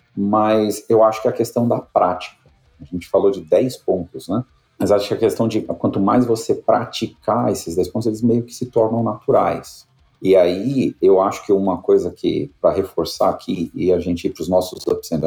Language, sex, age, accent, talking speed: Portuguese, male, 40-59, Brazilian, 210 wpm